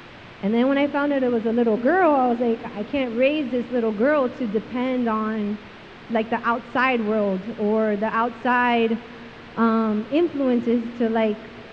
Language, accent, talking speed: English, American, 175 wpm